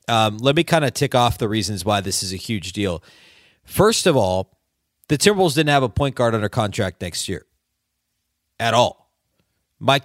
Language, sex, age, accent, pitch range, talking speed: English, male, 30-49, American, 105-140 Hz, 190 wpm